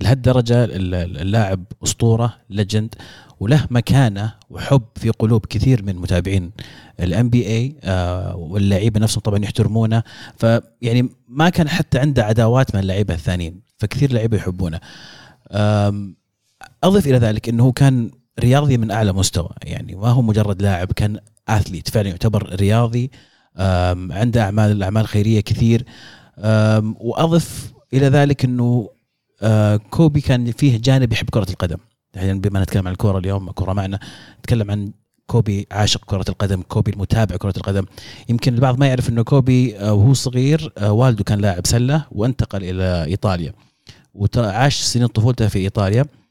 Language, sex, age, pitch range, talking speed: Arabic, male, 30-49, 100-125 Hz, 135 wpm